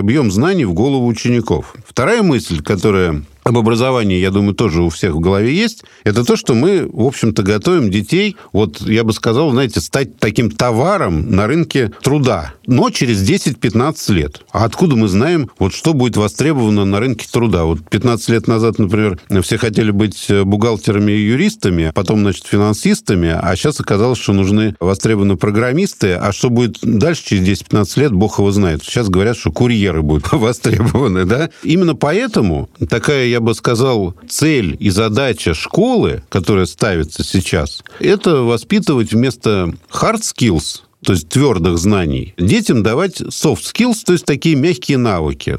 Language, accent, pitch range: Russian, native, 100-135 Hz